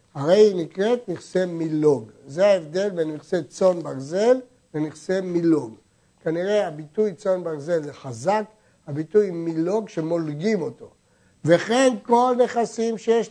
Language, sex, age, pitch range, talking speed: Hebrew, male, 60-79, 170-230 Hz, 120 wpm